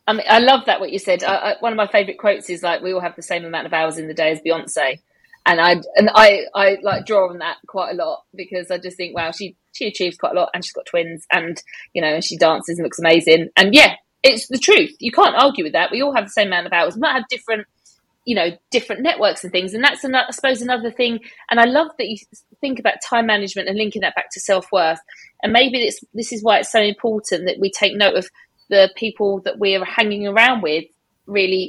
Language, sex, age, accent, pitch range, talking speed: English, female, 40-59, British, 190-245 Hz, 265 wpm